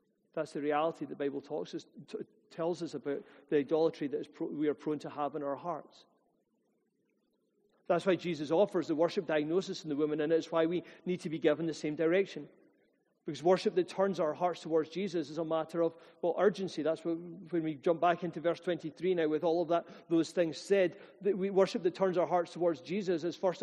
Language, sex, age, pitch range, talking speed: English, male, 40-59, 170-220 Hz, 225 wpm